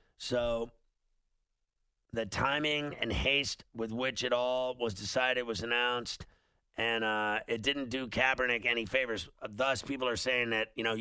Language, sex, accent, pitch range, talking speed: English, male, American, 105-125 Hz, 155 wpm